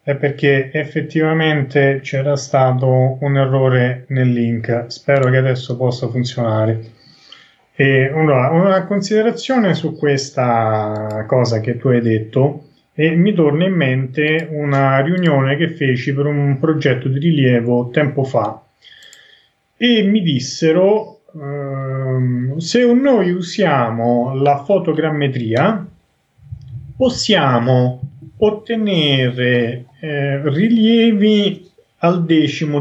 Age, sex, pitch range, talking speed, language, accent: 30-49, male, 125-175 Hz, 100 wpm, Italian, native